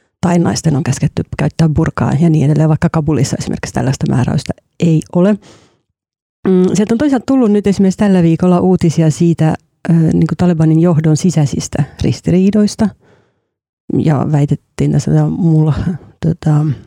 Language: Finnish